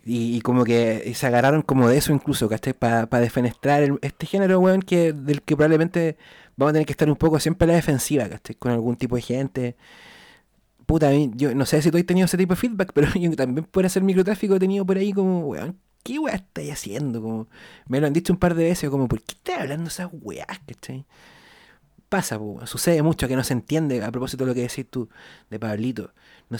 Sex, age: male, 30-49